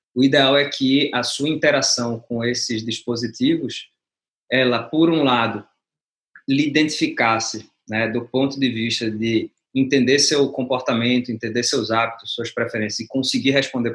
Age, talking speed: 20-39, 140 wpm